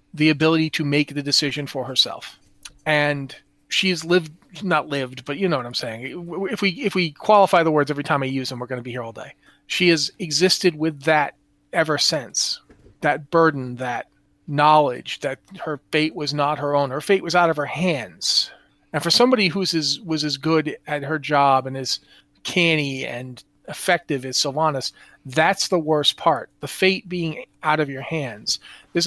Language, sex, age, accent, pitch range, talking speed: English, male, 40-59, American, 140-165 Hz, 190 wpm